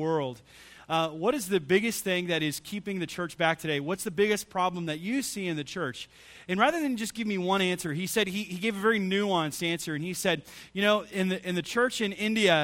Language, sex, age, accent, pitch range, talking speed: English, male, 30-49, American, 160-200 Hz, 245 wpm